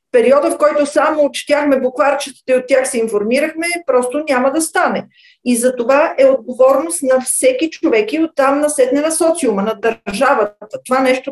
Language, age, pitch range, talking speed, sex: Bulgarian, 50-69, 240-290 Hz, 170 wpm, female